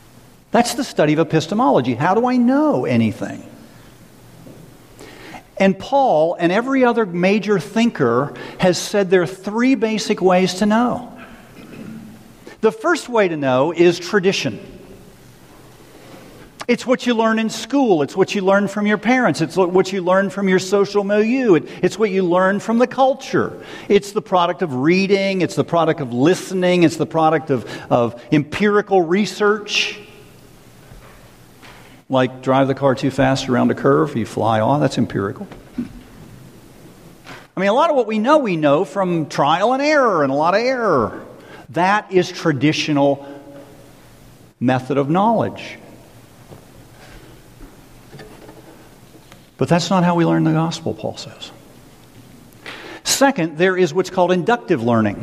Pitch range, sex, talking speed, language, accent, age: 150-210 Hz, male, 145 wpm, English, American, 50-69